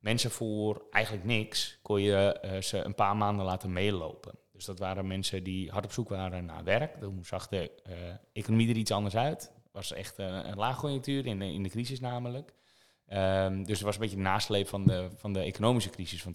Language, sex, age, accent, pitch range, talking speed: Dutch, male, 20-39, Dutch, 95-115 Hz, 215 wpm